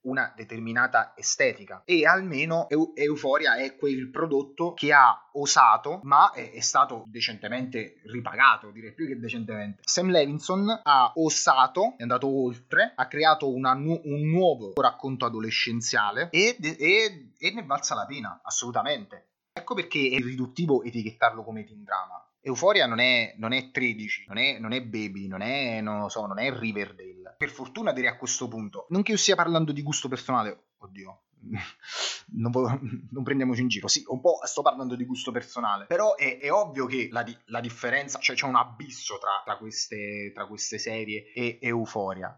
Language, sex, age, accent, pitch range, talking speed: Italian, male, 30-49, native, 115-145 Hz, 175 wpm